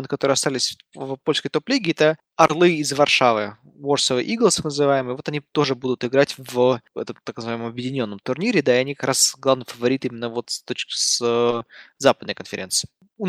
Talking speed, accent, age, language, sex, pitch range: 175 wpm, native, 20-39, Russian, male, 125-155 Hz